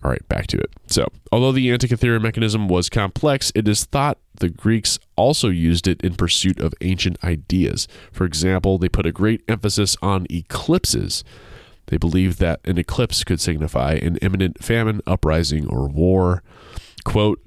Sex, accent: male, American